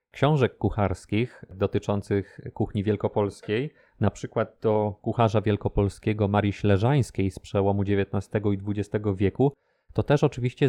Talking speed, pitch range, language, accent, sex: 120 wpm, 100-120 Hz, Polish, native, male